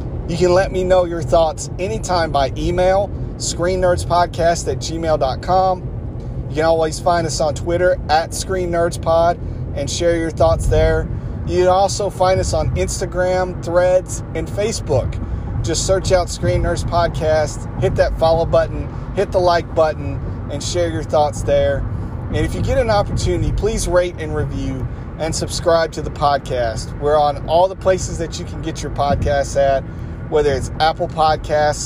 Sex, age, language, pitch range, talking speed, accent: male, 40-59, English, 125-170 Hz, 170 wpm, American